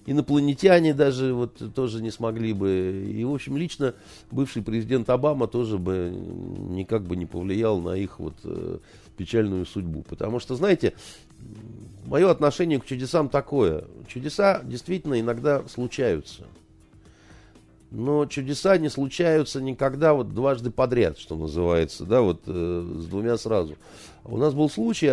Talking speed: 135 wpm